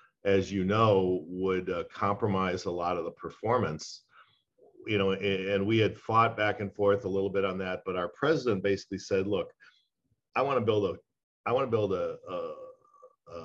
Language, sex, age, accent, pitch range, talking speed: English, male, 40-59, American, 95-115 Hz, 185 wpm